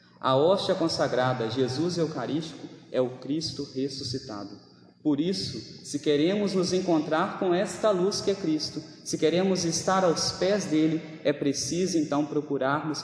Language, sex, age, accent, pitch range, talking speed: Portuguese, male, 20-39, Brazilian, 125-175 Hz, 145 wpm